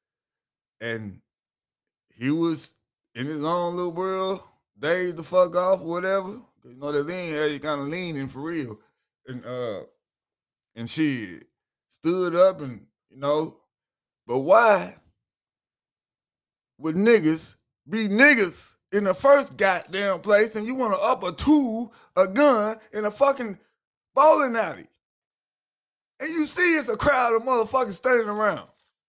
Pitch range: 170-275 Hz